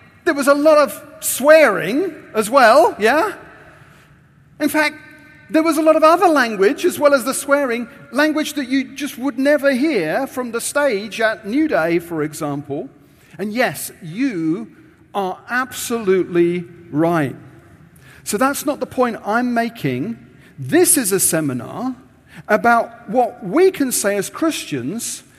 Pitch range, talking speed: 175-290 Hz, 145 wpm